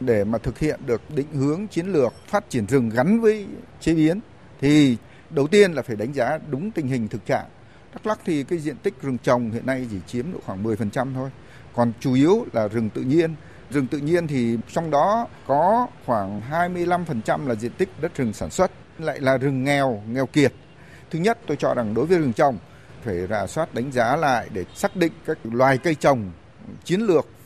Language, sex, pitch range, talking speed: Vietnamese, male, 120-165 Hz, 210 wpm